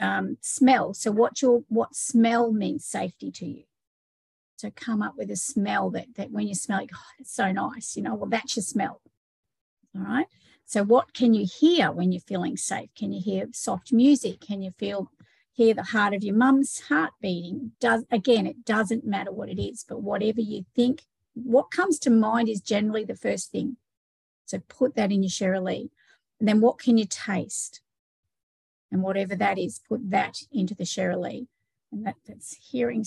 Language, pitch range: English, 200-250 Hz